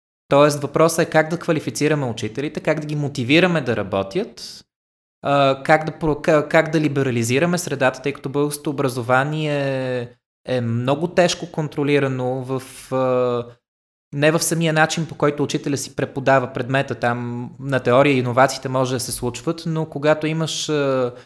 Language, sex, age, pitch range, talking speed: Bulgarian, male, 20-39, 125-150 Hz, 140 wpm